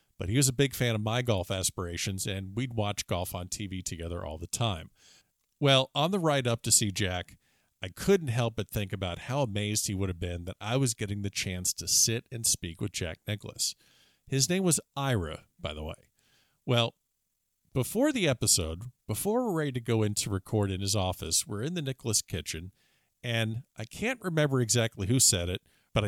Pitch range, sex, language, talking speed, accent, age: 100-135 Hz, male, English, 205 wpm, American, 50-69